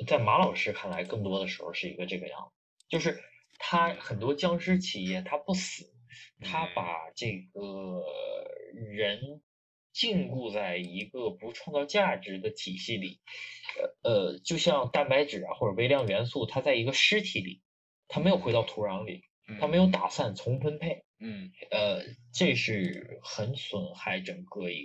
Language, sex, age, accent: Chinese, male, 20-39, native